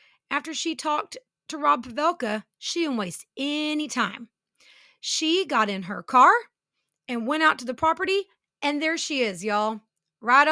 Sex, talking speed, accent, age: female, 160 wpm, American, 30-49